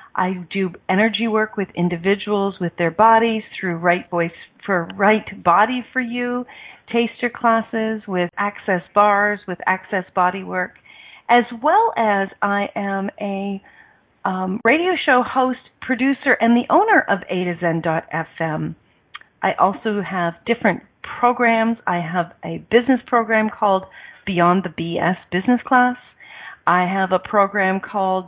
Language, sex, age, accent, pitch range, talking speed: English, female, 40-59, American, 180-230 Hz, 140 wpm